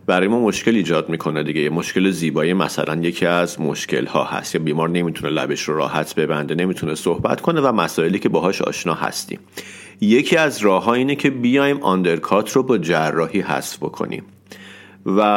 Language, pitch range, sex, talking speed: Persian, 85-110 Hz, male, 165 wpm